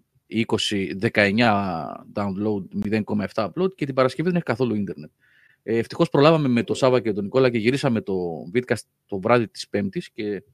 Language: Greek